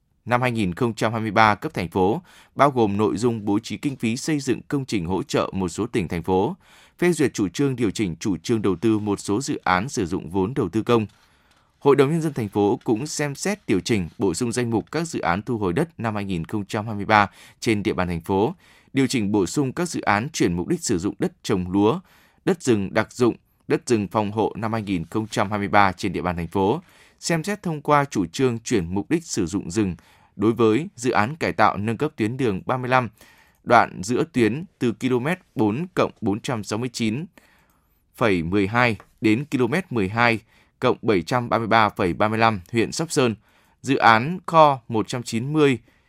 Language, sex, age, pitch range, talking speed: Vietnamese, male, 20-39, 100-130 Hz, 190 wpm